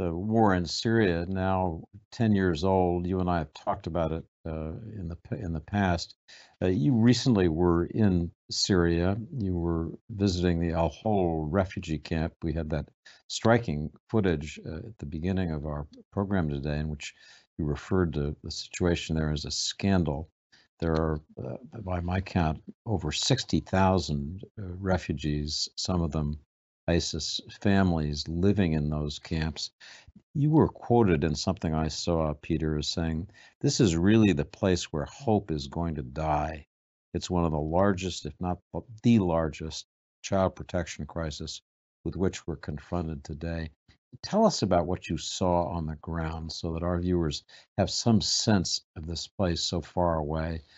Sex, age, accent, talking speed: male, 60-79, American, 160 wpm